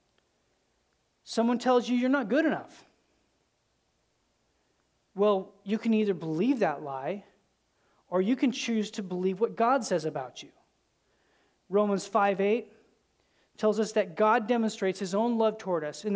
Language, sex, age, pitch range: English, male, 30-49, 190-235 Hz